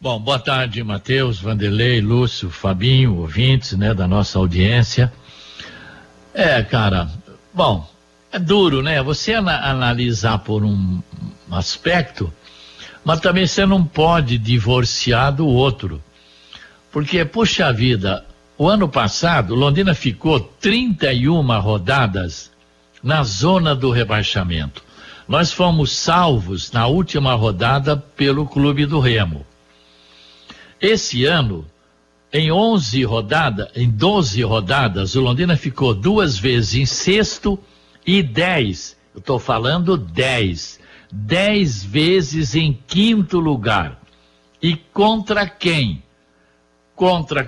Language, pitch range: Portuguese, 105-175 Hz